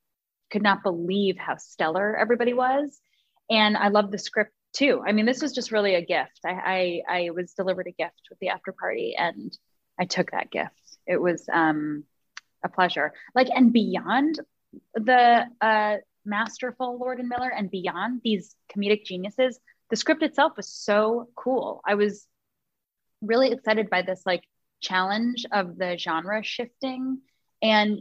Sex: female